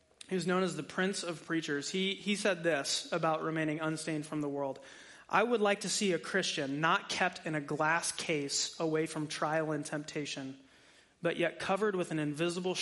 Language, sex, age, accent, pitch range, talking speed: English, male, 30-49, American, 150-180 Hz, 190 wpm